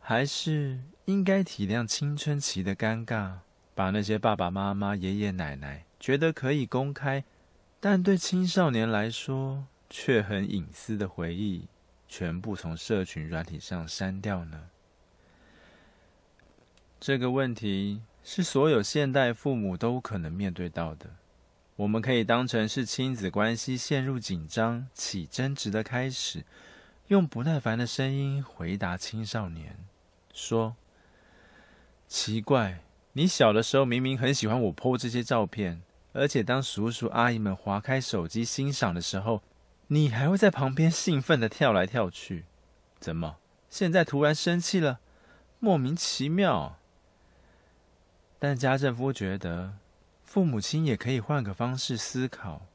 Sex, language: male, Chinese